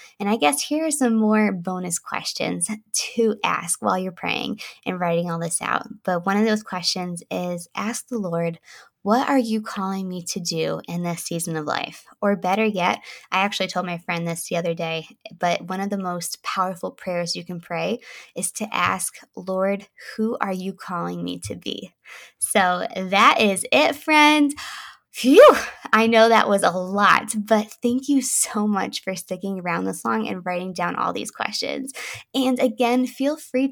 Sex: female